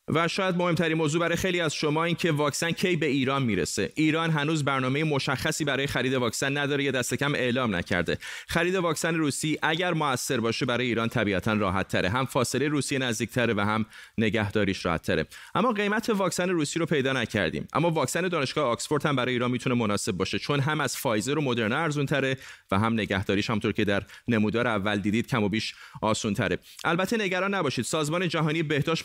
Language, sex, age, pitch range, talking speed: Persian, male, 30-49, 110-155 Hz, 180 wpm